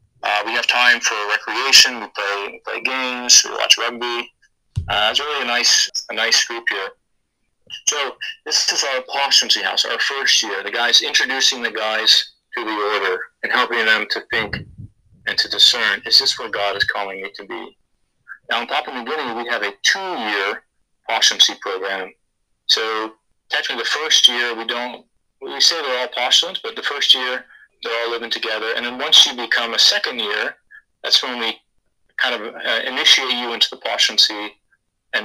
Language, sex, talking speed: English, male, 185 wpm